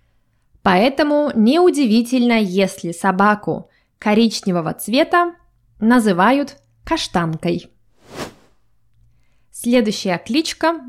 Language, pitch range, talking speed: Russian, 185-260 Hz, 55 wpm